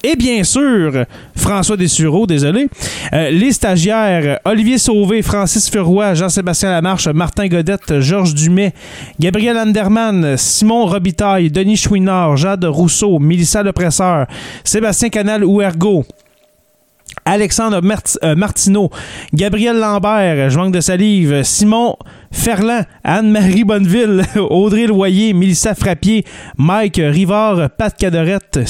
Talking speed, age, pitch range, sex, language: 115 wpm, 30-49, 160-205 Hz, male, French